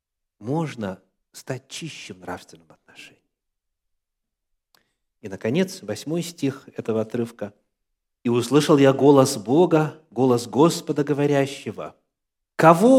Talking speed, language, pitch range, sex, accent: 90 wpm, Russian, 125-180 Hz, male, native